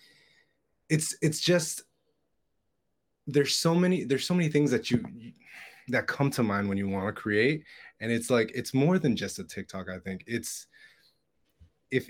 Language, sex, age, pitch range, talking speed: English, male, 20-39, 100-130 Hz, 170 wpm